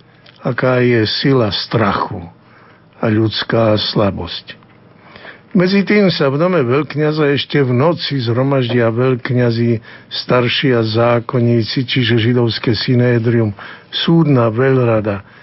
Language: Slovak